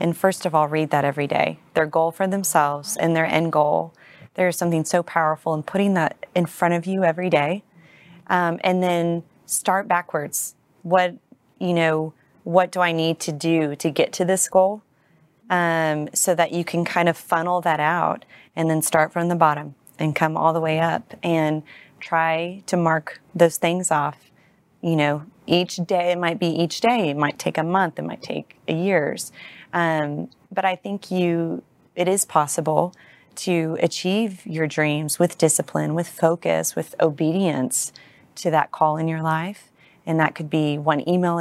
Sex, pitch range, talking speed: female, 155-175 Hz, 185 wpm